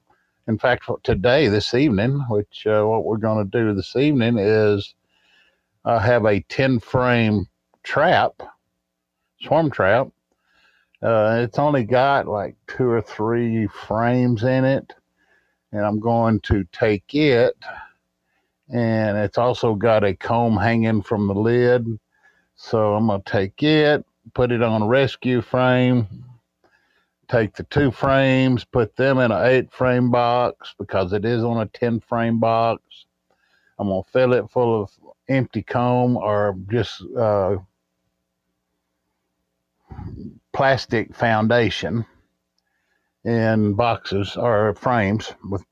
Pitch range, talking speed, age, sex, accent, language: 100-120 Hz, 125 wpm, 50-69, male, American, English